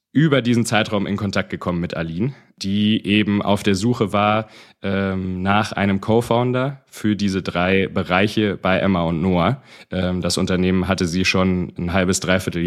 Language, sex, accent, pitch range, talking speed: German, male, German, 95-115 Hz, 165 wpm